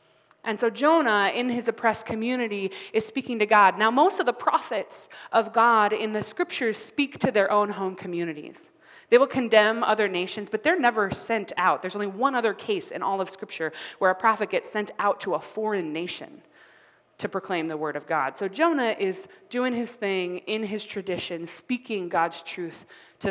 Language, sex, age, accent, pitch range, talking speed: English, female, 20-39, American, 175-225 Hz, 195 wpm